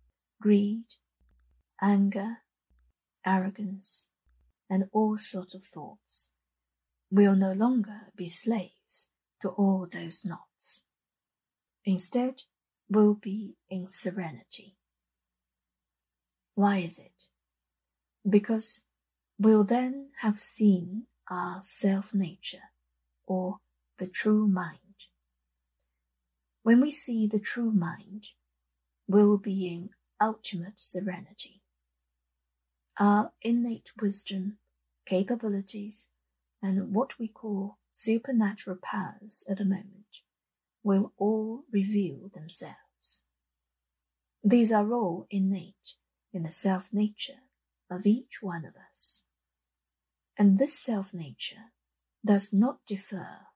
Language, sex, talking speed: English, female, 90 wpm